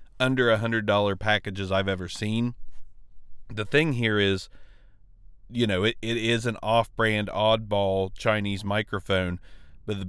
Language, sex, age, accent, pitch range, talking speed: English, male, 30-49, American, 95-115 Hz, 135 wpm